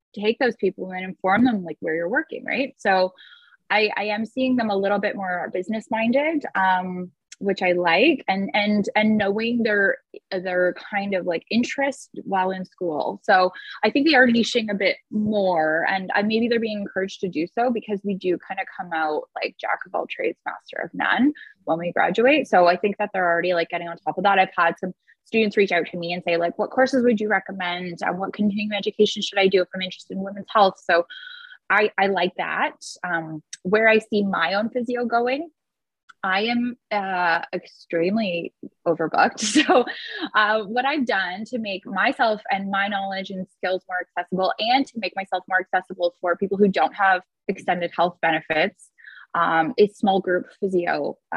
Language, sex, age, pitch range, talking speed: English, female, 10-29, 180-220 Hz, 200 wpm